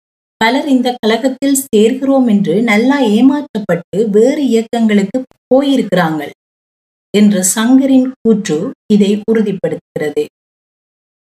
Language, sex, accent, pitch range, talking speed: Tamil, female, native, 205-260 Hz, 75 wpm